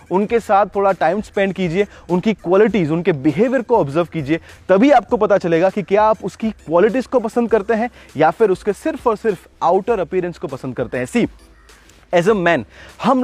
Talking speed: 195 wpm